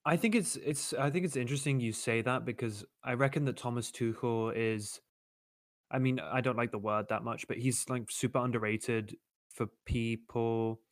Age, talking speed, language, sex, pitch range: 10-29, 185 wpm, English, male, 110-125 Hz